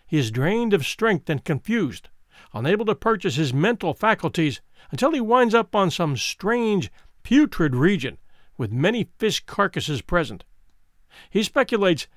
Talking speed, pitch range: 145 wpm, 135-205 Hz